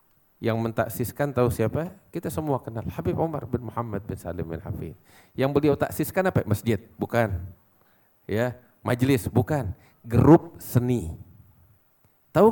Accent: Indonesian